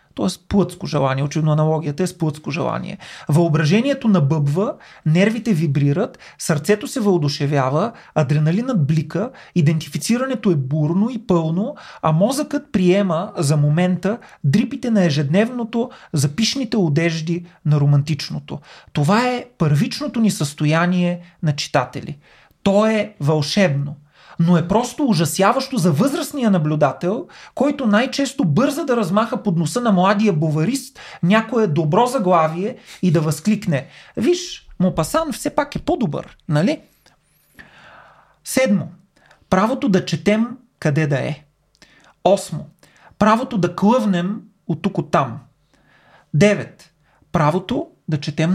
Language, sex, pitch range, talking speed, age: Bulgarian, male, 155-220 Hz, 115 wpm, 30-49